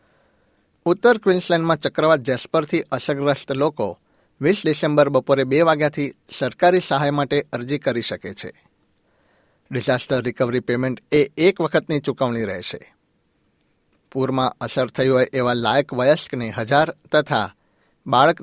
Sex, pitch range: male, 130-155 Hz